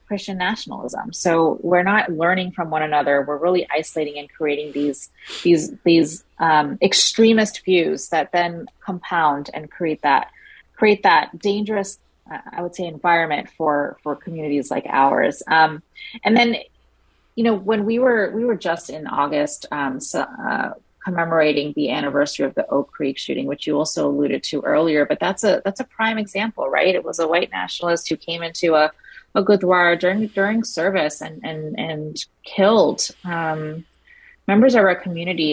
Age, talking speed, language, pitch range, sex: 30-49, 170 wpm, English, 160-220 Hz, female